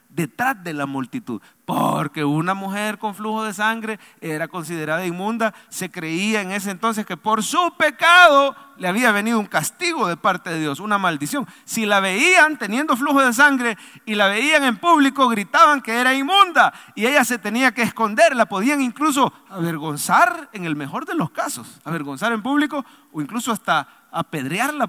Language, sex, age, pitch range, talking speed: English, male, 40-59, 195-260 Hz, 175 wpm